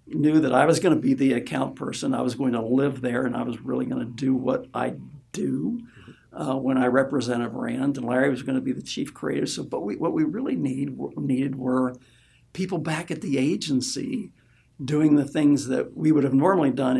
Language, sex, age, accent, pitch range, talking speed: English, male, 60-79, American, 130-150 Hz, 215 wpm